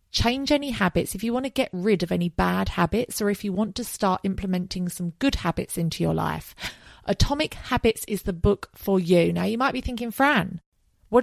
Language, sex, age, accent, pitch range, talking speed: English, female, 30-49, British, 170-225 Hz, 215 wpm